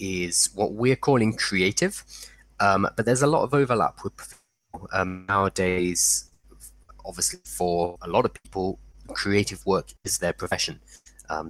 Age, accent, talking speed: 20-39, British, 140 wpm